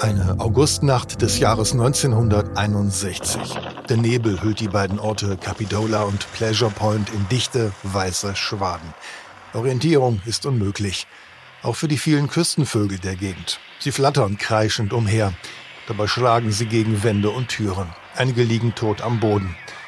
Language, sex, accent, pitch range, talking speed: German, male, German, 105-125 Hz, 135 wpm